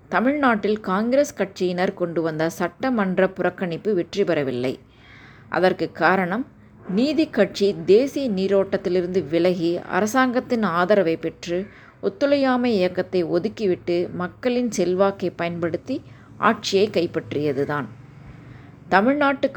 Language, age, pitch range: Tamil, 20-39, 170-210 Hz